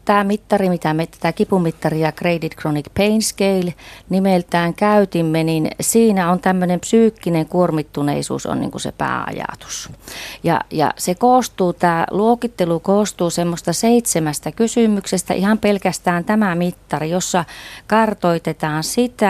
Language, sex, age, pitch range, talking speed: Finnish, female, 30-49, 160-195 Hz, 125 wpm